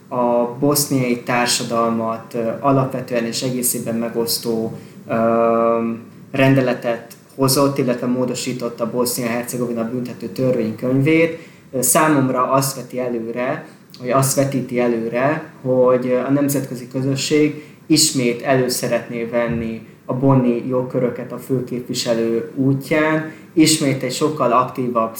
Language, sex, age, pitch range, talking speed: Hungarian, male, 20-39, 120-140 Hz, 100 wpm